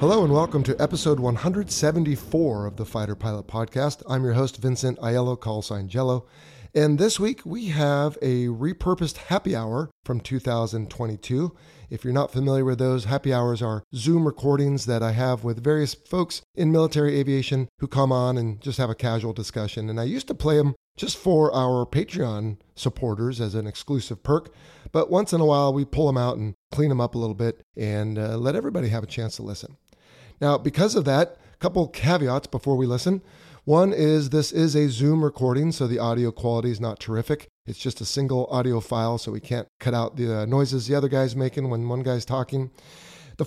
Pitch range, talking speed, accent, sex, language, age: 120-150 Hz, 200 wpm, American, male, English, 30-49